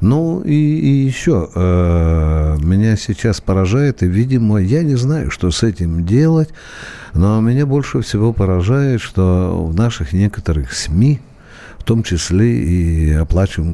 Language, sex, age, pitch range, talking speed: Russian, male, 50-69, 95-135 Hz, 140 wpm